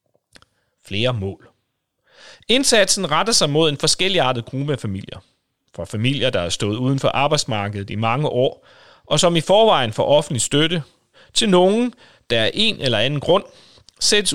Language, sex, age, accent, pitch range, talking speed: Danish, male, 30-49, native, 110-165 Hz, 160 wpm